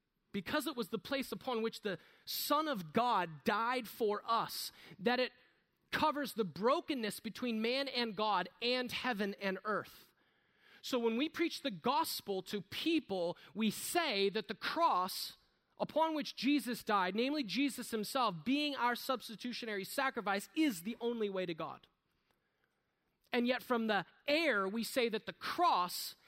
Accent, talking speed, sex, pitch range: American, 155 wpm, male, 185-250 Hz